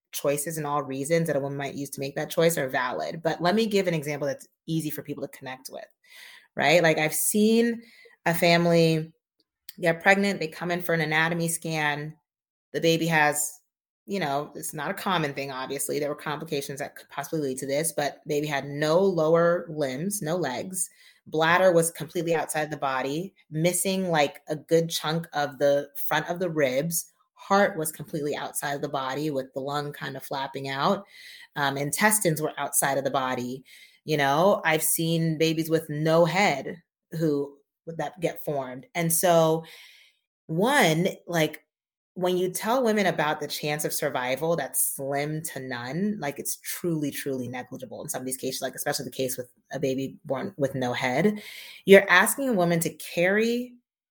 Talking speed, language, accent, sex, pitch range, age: 185 wpm, English, American, female, 140-175 Hz, 30-49